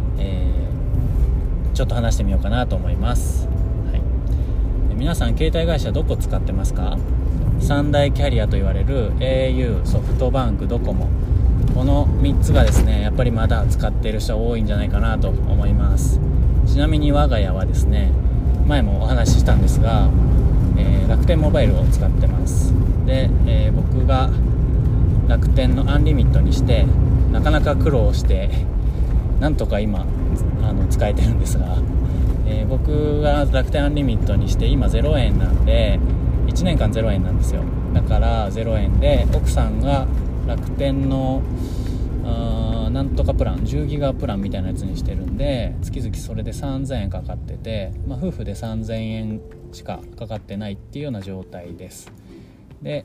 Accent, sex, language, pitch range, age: native, male, Japanese, 80-115 Hz, 20-39